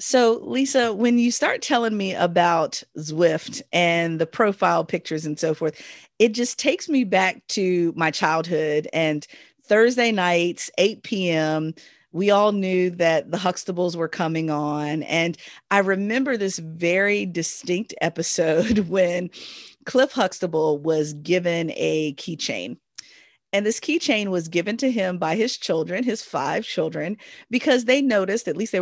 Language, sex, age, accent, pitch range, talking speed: English, female, 40-59, American, 170-235 Hz, 150 wpm